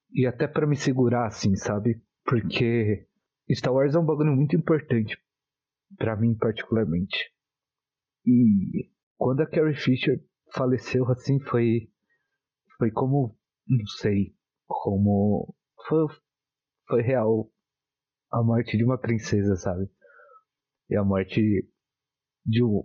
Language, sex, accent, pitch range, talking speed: Portuguese, male, Brazilian, 105-140 Hz, 115 wpm